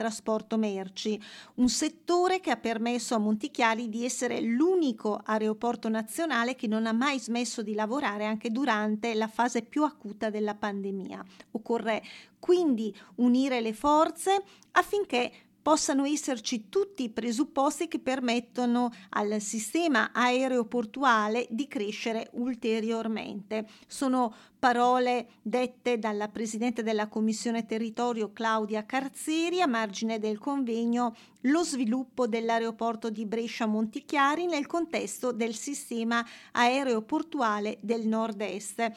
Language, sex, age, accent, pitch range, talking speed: Italian, female, 40-59, native, 220-260 Hz, 115 wpm